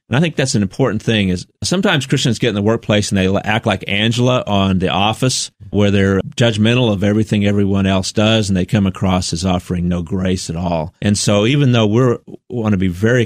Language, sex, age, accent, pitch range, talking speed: English, male, 40-59, American, 90-110 Hz, 225 wpm